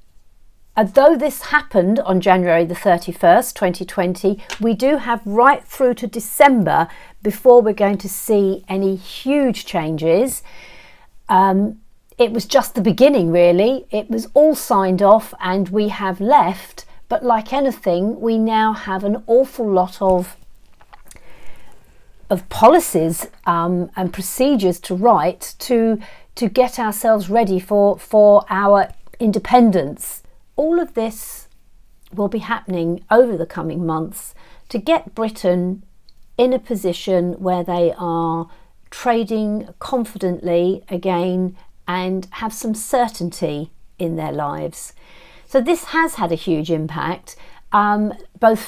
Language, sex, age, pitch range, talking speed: English, female, 50-69, 180-235 Hz, 130 wpm